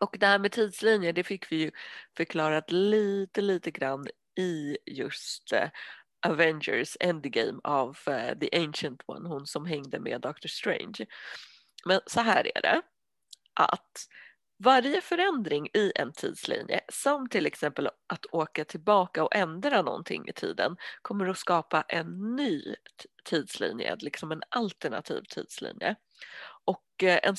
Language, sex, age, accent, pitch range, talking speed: Swedish, female, 30-49, native, 160-220 Hz, 135 wpm